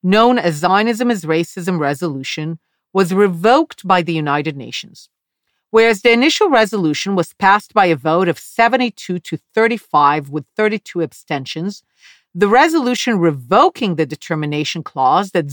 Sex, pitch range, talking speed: female, 160-225 Hz, 135 wpm